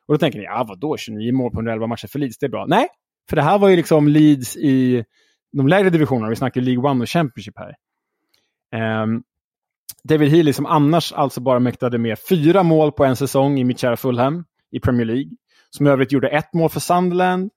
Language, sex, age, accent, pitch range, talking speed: Swedish, male, 20-39, Norwegian, 125-175 Hz, 220 wpm